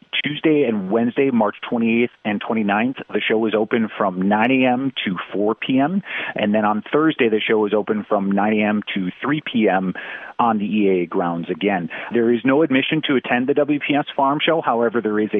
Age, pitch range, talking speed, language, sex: 40-59, 105-130 Hz, 195 wpm, English, male